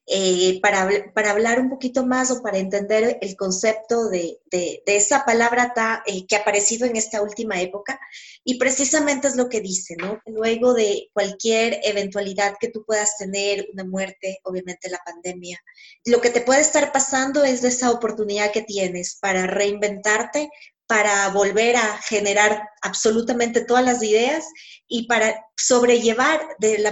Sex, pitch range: female, 205-245 Hz